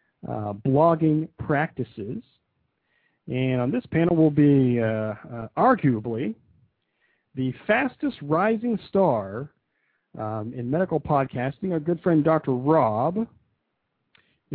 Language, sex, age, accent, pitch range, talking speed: English, male, 50-69, American, 110-160 Hz, 105 wpm